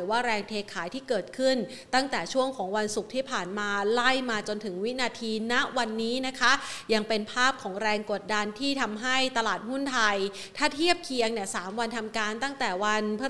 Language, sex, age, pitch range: Thai, female, 30-49, 220-265 Hz